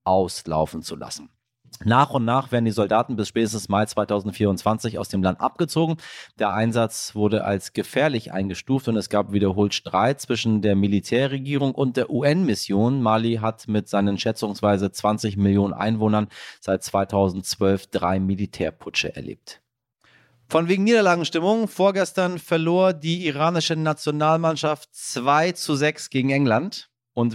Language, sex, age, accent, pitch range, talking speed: German, male, 30-49, German, 110-150 Hz, 135 wpm